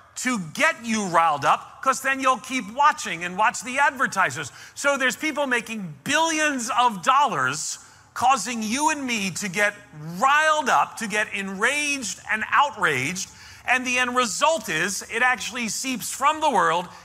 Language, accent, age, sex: English, American, 40-59, male